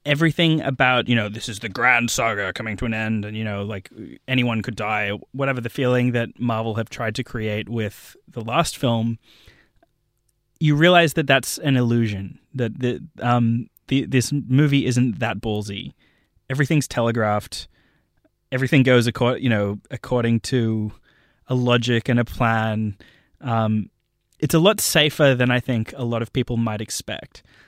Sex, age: male, 20-39